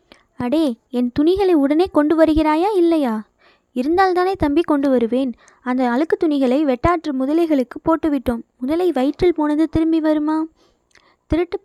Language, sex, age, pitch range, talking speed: Tamil, female, 20-39, 260-320 Hz, 120 wpm